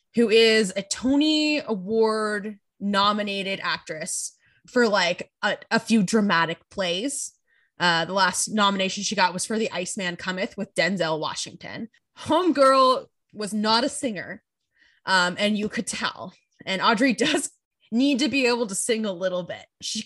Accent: American